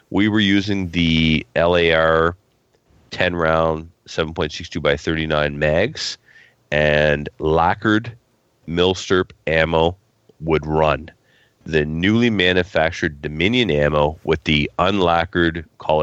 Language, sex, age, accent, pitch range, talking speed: English, male, 30-49, American, 75-90 Hz, 90 wpm